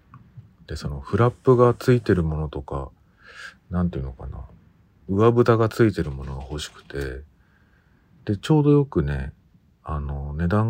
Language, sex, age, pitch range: Japanese, male, 40-59, 75-105 Hz